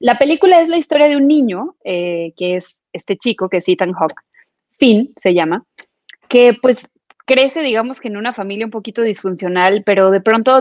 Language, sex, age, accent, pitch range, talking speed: Spanish, female, 20-39, Mexican, 195-245 Hz, 190 wpm